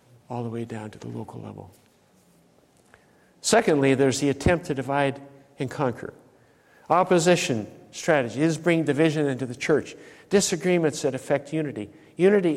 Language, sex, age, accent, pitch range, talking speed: English, male, 60-79, American, 125-165 Hz, 140 wpm